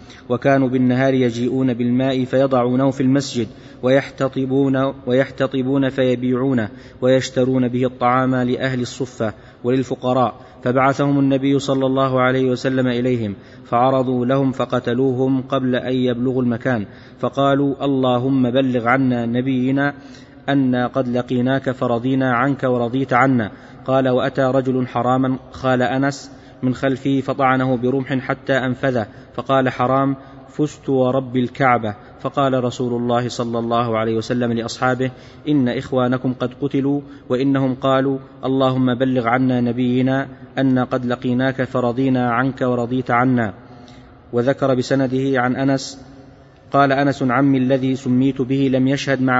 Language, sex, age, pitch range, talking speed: Arabic, male, 20-39, 125-135 Hz, 120 wpm